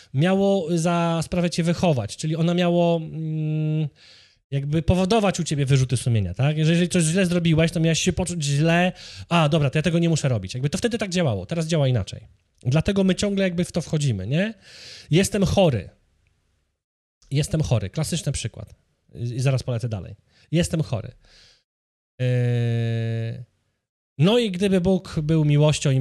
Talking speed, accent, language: 160 wpm, native, Polish